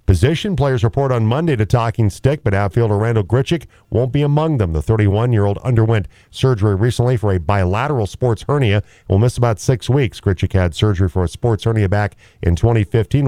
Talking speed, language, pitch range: 195 wpm, English, 95-120 Hz